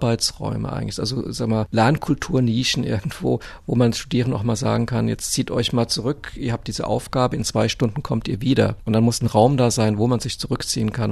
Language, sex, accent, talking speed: German, male, German, 220 wpm